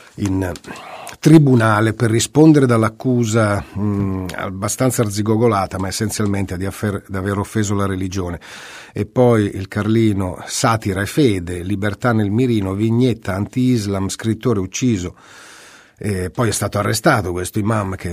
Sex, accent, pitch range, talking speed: male, native, 95-120 Hz, 130 wpm